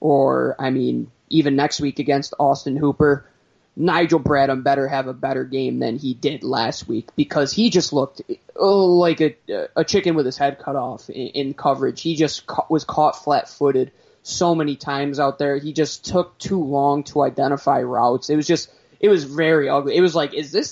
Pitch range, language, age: 140-165 Hz, English, 20-39